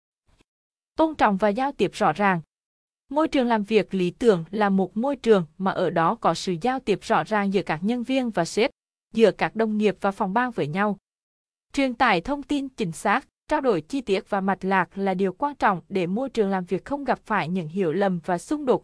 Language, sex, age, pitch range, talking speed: Vietnamese, female, 20-39, 185-235 Hz, 230 wpm